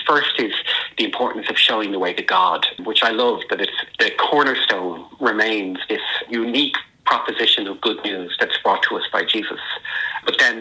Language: English